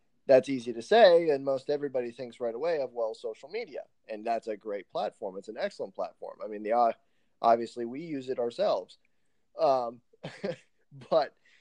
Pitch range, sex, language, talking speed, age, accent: 115-160 Hz, male, English, 170 wpm, 20-39, American